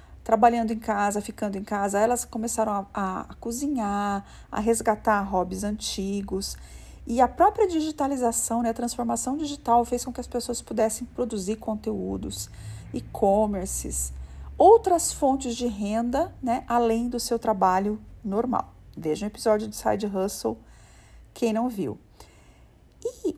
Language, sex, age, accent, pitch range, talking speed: Portuguese, female, 40-59, Brazilian, 200-245 Hz, 140 wpm